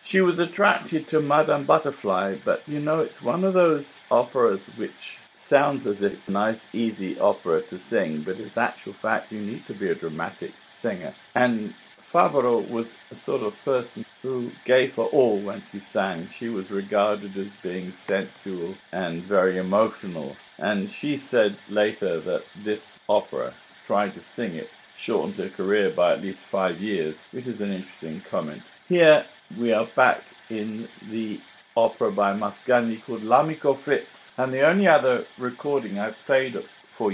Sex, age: male, 50-69